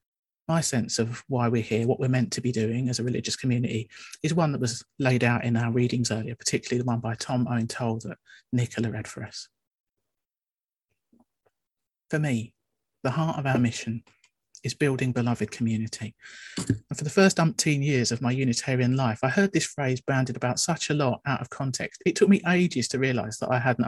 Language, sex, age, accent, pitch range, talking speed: English, male, 40-59, British, 115-140 Hz, 200 wpm